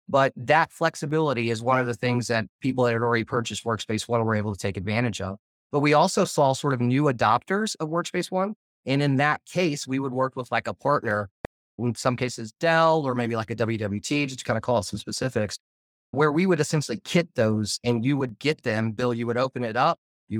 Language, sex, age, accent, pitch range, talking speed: English, male, 30-49, American, 115-140 Hz, 230 wpm